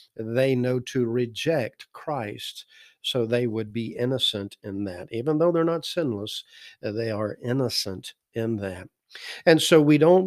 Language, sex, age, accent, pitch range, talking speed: English, male, 50-69, American, 110-140 Hz, 150 wpm